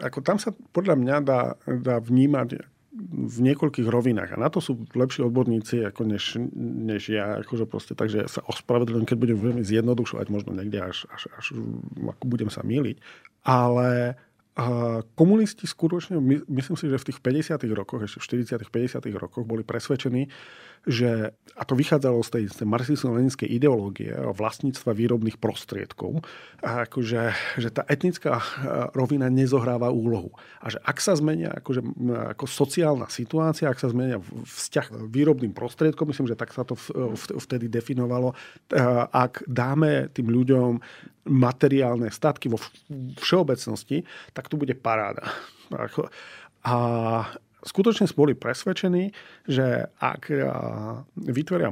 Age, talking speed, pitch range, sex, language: 40-59, 140 wpm, 115-145 Hz, male, Slovak